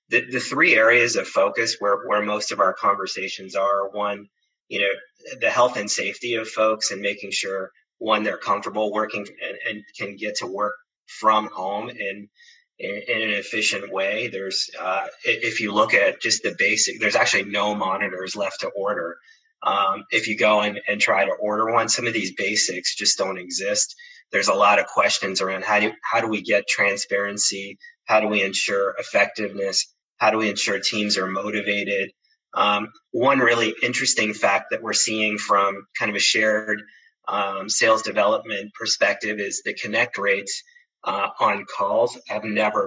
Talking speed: 175 wpm